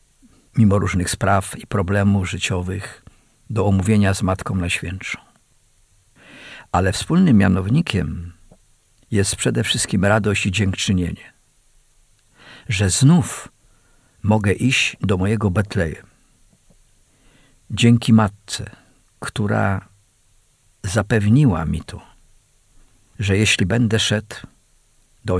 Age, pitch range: 50-69, 95-110 Hz